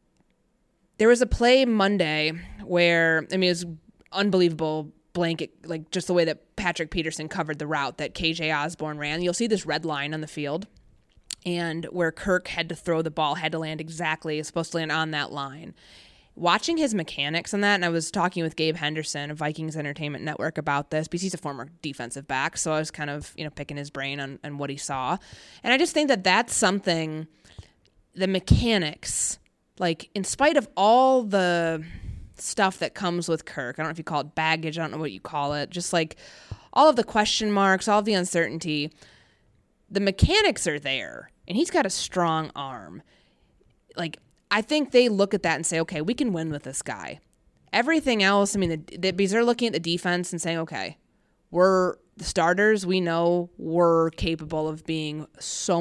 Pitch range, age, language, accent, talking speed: 155-190 Hz, 20-39, English, American, 205 wpm